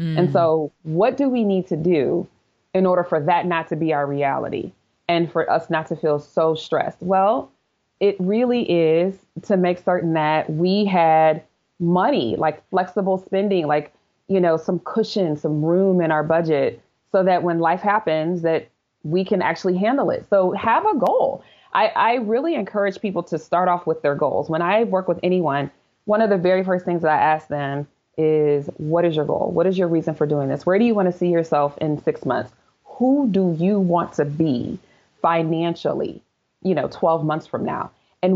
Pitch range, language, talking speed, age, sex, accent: 160-190 Hz, English, 195 wpm, 20-39, female, American